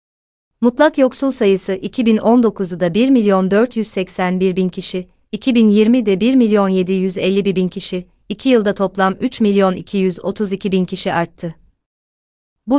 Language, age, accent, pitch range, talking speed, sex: Turkish, 30-49, native, 180-215 Hz, 80 wpm, female